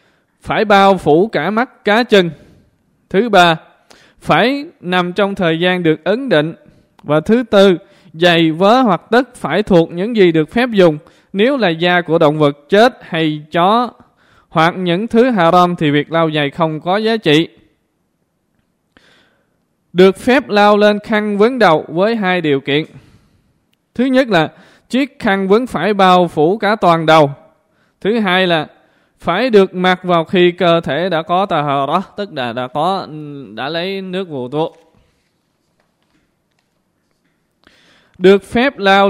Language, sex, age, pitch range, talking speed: Vietnamese, male, 20-39, 160-205 Hz, 155 wpm